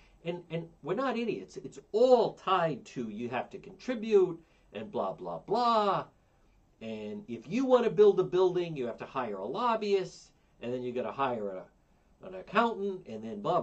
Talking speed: 190 wpm